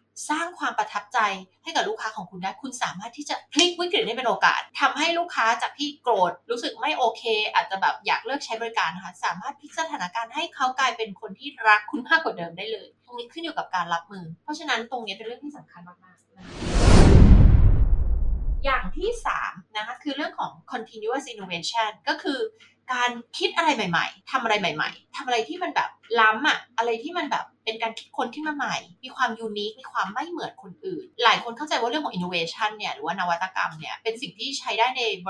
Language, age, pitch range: Thai, 20-39, 215-310 Hz